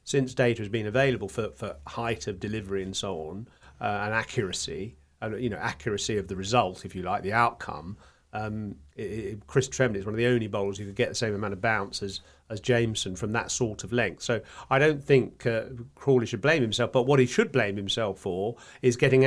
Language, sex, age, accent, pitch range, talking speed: English, male, 40-59, British, 105-130 Hz, 225 wpm